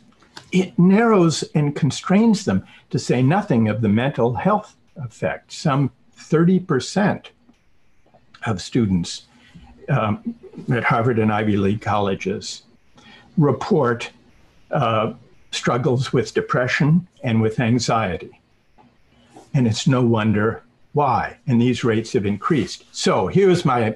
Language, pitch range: English, 110-155 Hz